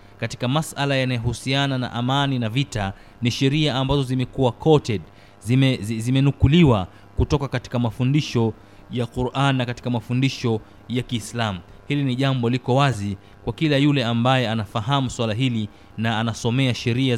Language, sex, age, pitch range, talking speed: Swahili, male, 30-49, 100-135 Hz, 135 wpm